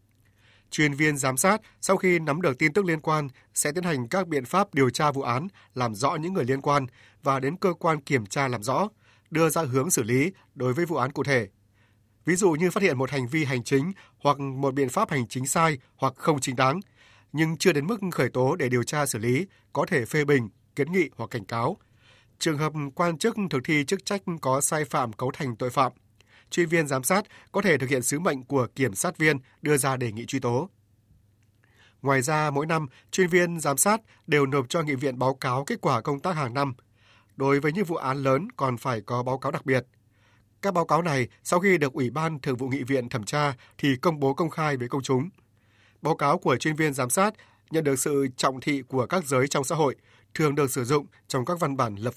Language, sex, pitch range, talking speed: Vietnamese, male, 125-160 Hz, 240 wpm